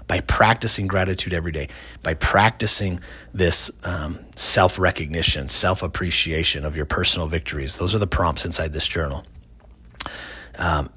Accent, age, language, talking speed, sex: American, 30-49, English, 125 wpm, male